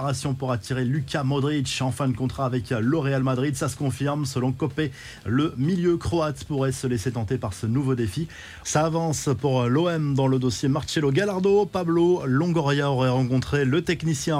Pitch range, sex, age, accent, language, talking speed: 130-165 Hz, male, 30-49, French, French, 180 wpm